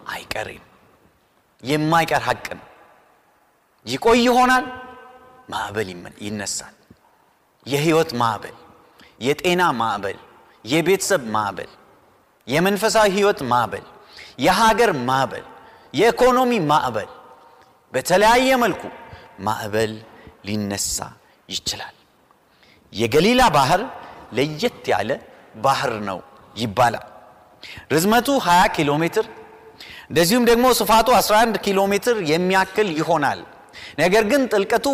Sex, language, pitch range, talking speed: male, Amharic, 150-230 Hz, 90 wpm